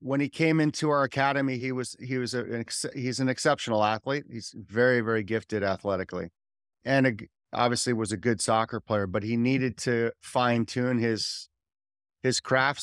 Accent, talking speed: American, 180 wpm